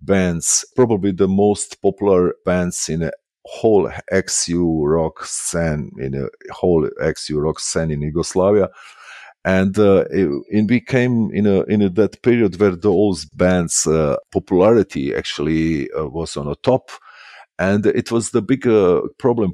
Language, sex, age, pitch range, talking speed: English, male, 50-69, 85-105 Hz, 150 wpm